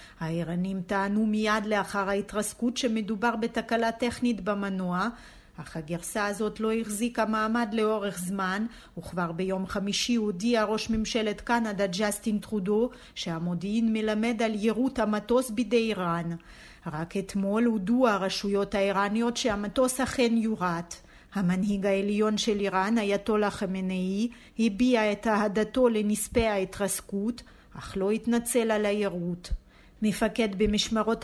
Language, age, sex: Hebrew, 40-59, female